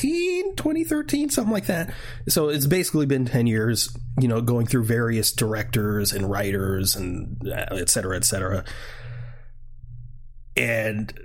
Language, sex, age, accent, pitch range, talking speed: English, male, 30-49, American, 115-140 Hz, 115 wpm